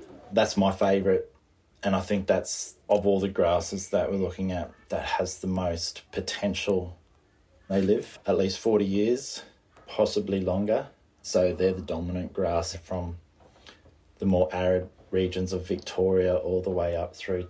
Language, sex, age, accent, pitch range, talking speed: English, male, 20-39, Australian, 90-100 Hz, 155 wpm